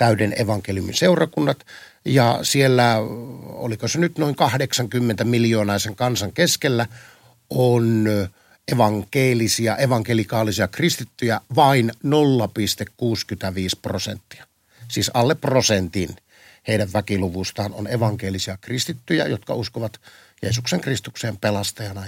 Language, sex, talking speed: Finnish, male, 85 wpm